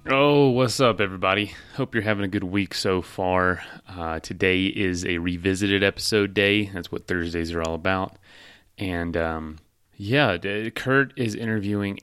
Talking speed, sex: 155 wpm, male